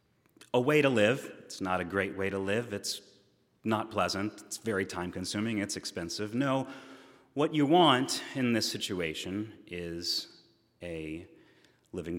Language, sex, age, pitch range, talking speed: English, male, 30-49, 95-150 Hz, 150 wpm